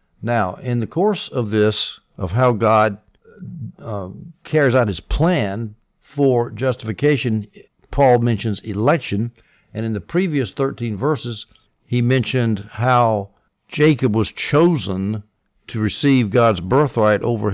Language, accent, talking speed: English, American, 125 wpm